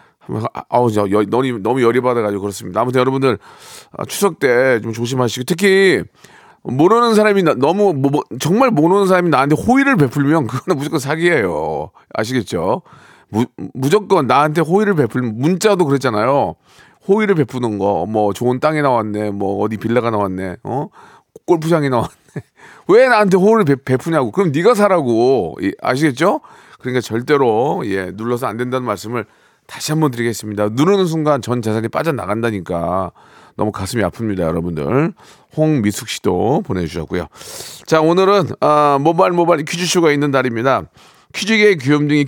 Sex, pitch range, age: male, 120-175 Hz, 40-59